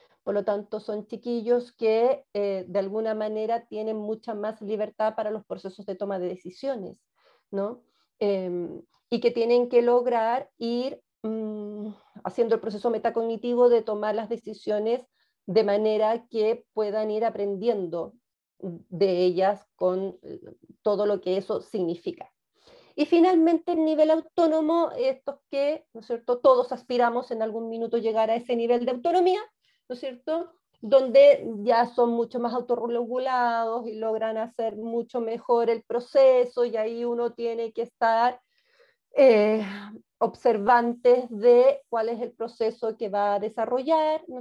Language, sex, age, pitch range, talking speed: Spanish, female, 40-59, 210-245 Hz, 145 wpm